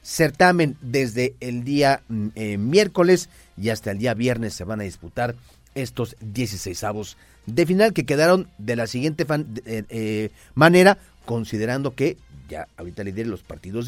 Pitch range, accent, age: 110-145 Hz, Mexican, 40-59